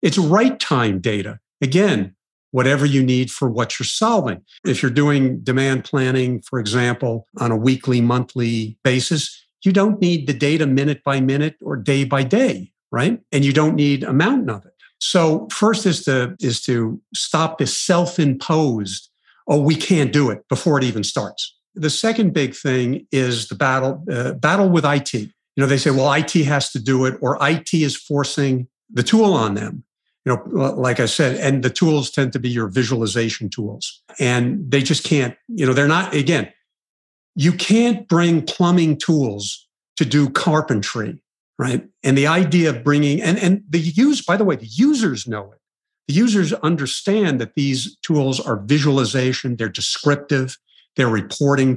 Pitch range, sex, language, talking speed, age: 125-160 Hz, male, English, 175 wpm, 50-69